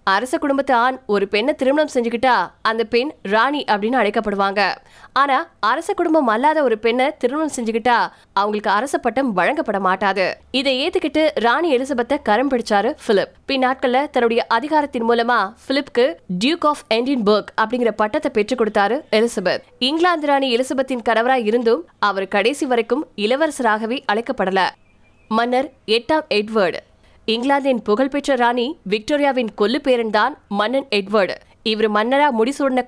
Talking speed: 90 wpm